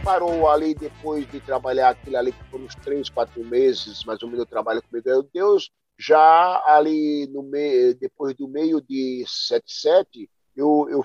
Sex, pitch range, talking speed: male, 120-190 Hz, 170 wpm